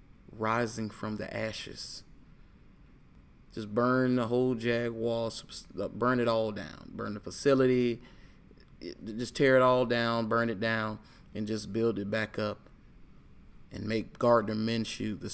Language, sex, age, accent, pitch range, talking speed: English, male, 20-39, American, 105-120 Hz, 135 wpm